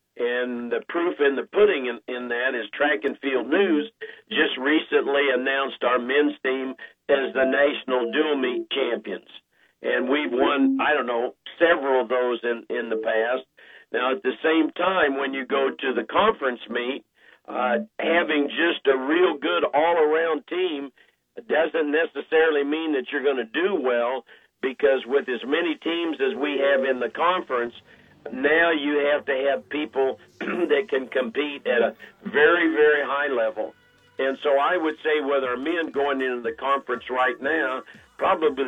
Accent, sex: American, male